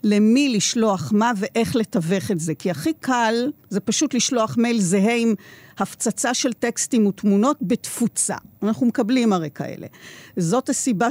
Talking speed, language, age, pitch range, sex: 145 wpm, Hebrew, 50-69, 195-255 Hz, female